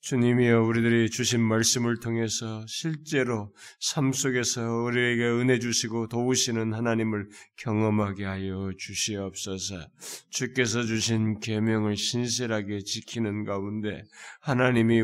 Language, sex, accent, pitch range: Korean, male, native, 115-145 Hz